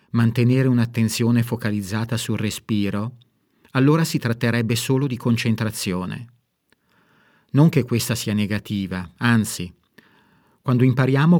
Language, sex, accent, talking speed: Italian, male, native, 100 wpm